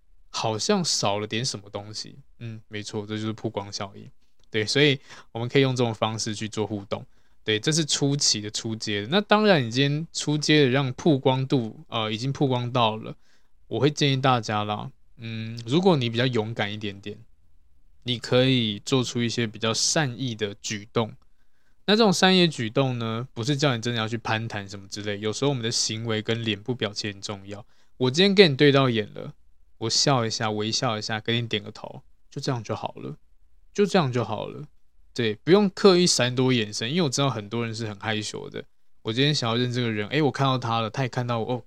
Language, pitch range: Chinese, 105-135 Hz